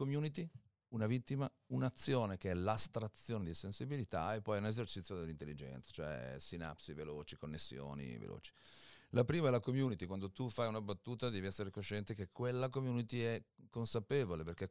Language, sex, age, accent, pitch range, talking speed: Italian, male, 40-59, native, 90-120 Hz, 155 wpm